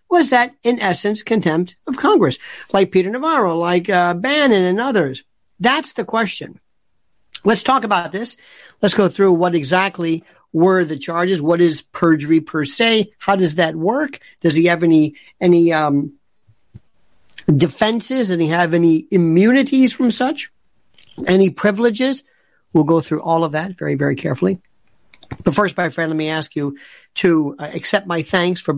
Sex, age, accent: male, 50-69, American